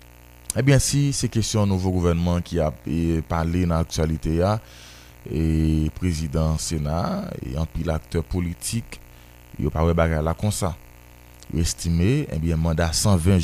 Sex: male